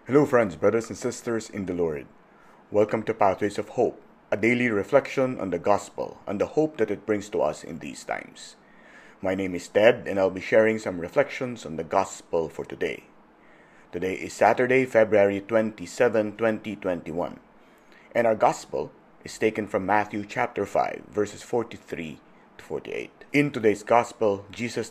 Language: English